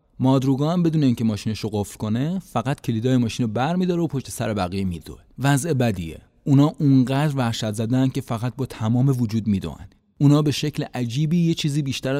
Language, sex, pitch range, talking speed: Persian, male, 100-140 Hz, 175 wpm